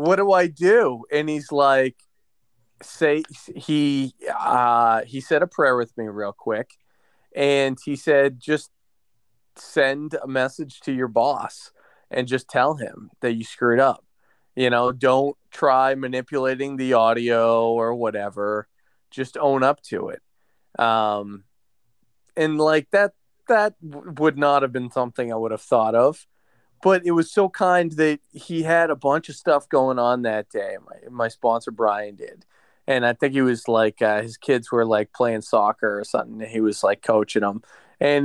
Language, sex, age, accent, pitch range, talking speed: English, male, 20-39, American, 115-150 Hz, 170 wpm